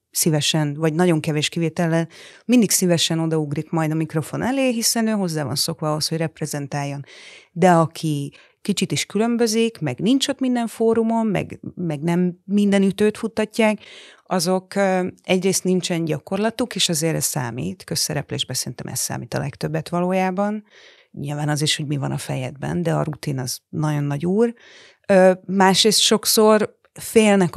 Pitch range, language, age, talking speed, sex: 155-195 Hz, Hungarian, 30-49, 150 wpm, female